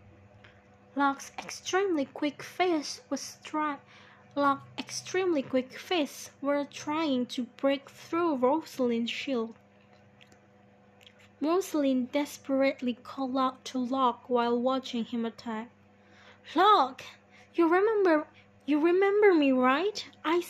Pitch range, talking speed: 235-300 Hz, 100 wpm